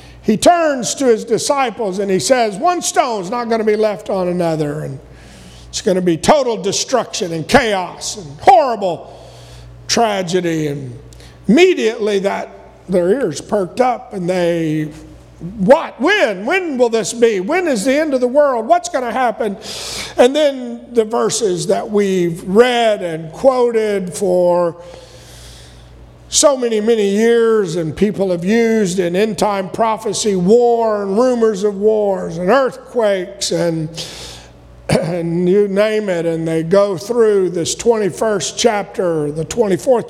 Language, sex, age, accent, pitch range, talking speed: English, male, 50-69, American, 170-235 Hz, 150 wpm